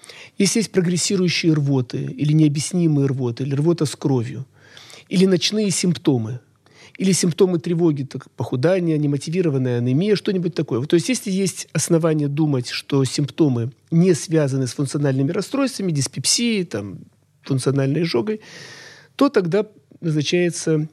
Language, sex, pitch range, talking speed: Russian, male, 135-185 Hz, 125 wpm